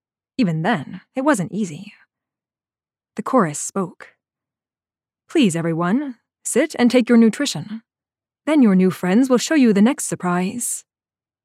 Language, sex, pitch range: English, female, 180-250 Hz